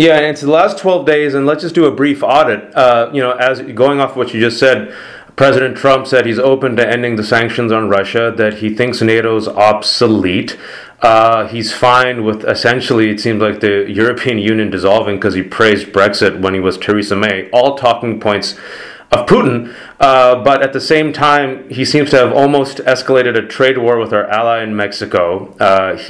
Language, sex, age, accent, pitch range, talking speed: English, male, 30-49, American, 110-130 Hz, 200 wpm